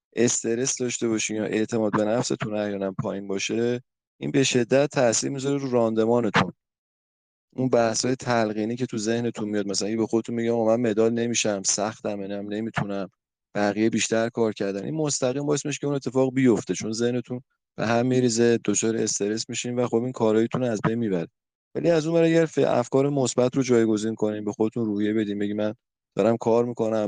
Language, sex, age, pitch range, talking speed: Persian, male, 20-39, 105-125 Hz, 175 wpm